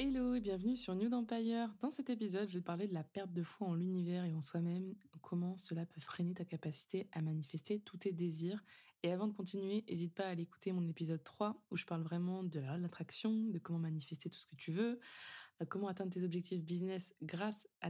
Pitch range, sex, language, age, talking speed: 170-205 Hz, female, French, 20-39, 235 wpm